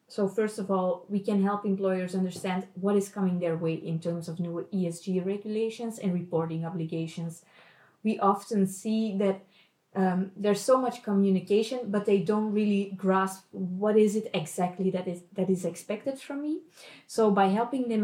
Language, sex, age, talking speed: English, female, 20-39, 170 wpm